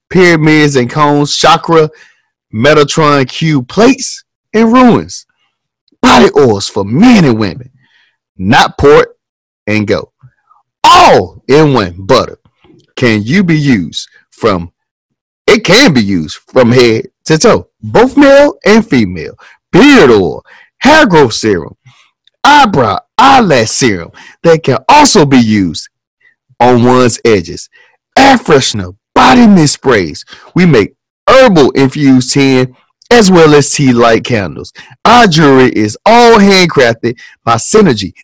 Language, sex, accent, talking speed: English, male, American, 125 wpm